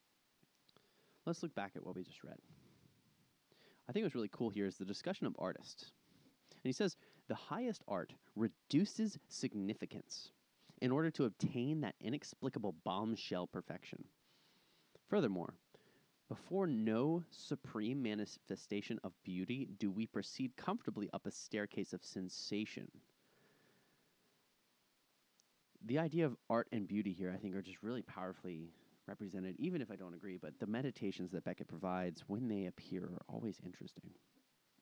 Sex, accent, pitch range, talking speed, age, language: male, American, 95-125 Hz, 140 wpm, 30-49, English